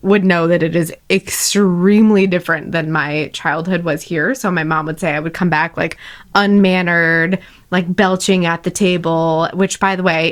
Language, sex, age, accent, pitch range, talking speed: English, female, 20-39, American, 165-205 Hz, 185 wpm